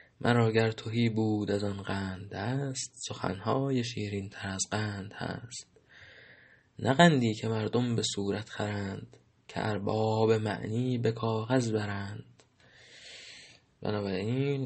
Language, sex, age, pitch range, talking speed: Persian, male, 20-39, 105-125 Hz, 110 wpm